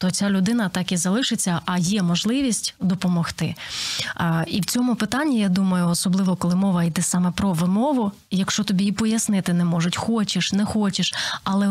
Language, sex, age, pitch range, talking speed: Ukrainian, female, 20-39, 180-220 Hz, 175 wpm